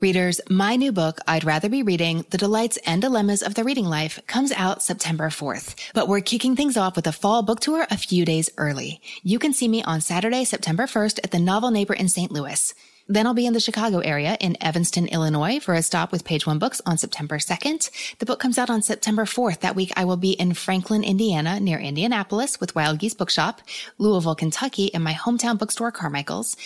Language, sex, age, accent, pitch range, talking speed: English, female, 20-39, American, 160-225 Hz, 220 wpm